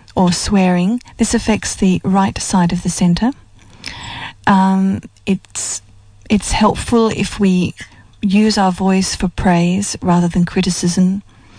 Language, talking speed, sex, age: English, 125 wpm, female, 40-59